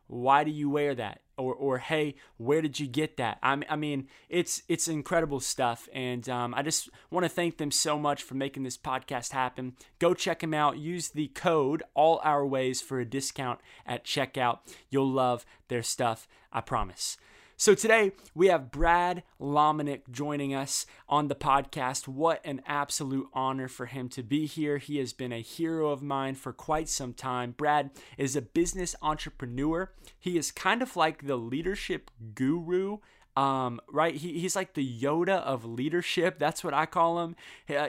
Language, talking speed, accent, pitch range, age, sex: English, 185 wpm, American, 130-165 Hz, 20-39, male